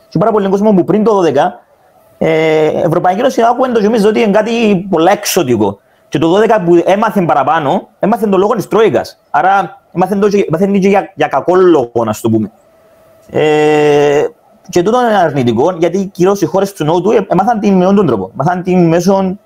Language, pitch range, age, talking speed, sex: Greek, 145-210 Hz, 30-49, 175 wpm, male